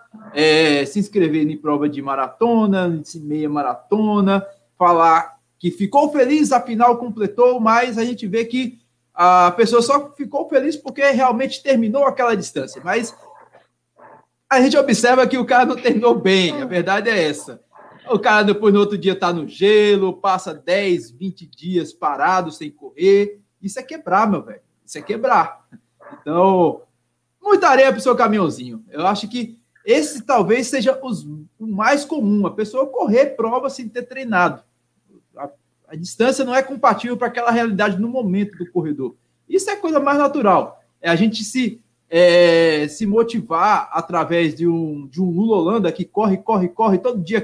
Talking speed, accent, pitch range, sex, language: 160 wpm, Brazilian, 175-240 Hz, male, Portuguese